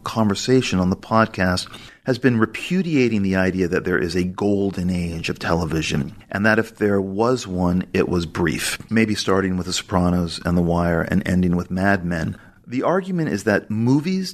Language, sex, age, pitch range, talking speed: English, male, 40-59, 90-110 Hz, 185 wpm